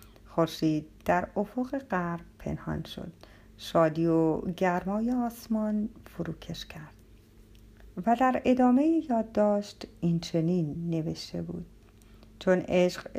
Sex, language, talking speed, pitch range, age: female, Persian, 105 wpm, 160-230 Hz, 50-69